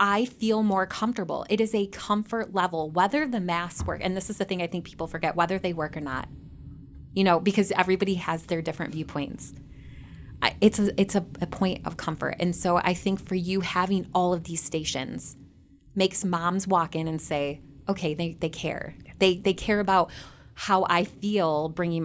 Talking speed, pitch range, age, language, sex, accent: 195 wpm, 160-195 Hz, 20-39, English, female, American